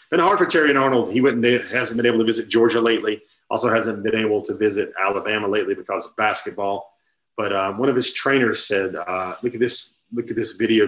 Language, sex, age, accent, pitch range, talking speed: English, male, 40-59, American, 100-120 Hz, 235 wpm